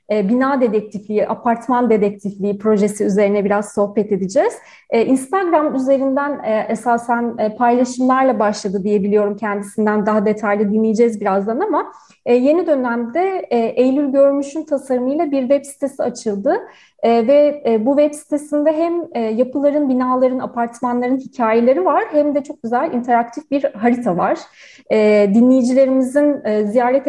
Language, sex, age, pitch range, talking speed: Turkish, female, 30-49, 215-275 Hz, 110 wpm